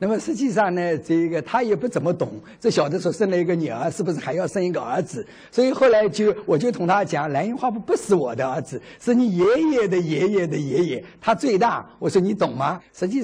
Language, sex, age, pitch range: Chinese, male, 50-69, 165-230 Hz